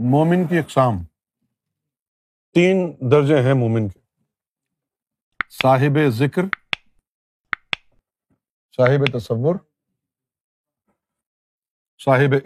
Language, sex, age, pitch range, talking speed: Urdu, male, 50-69, 125-180 Hz, 65 wpm